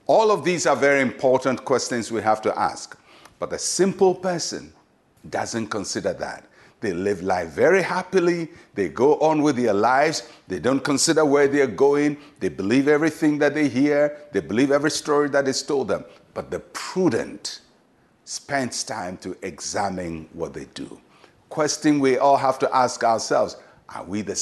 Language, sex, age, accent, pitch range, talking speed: English, male, 60-79, Nigerian, 115-155 Hz, 170 wpm